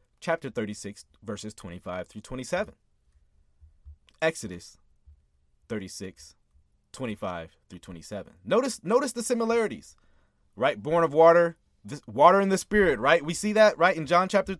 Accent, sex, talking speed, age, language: American, male, 125 wpm, 30-49, English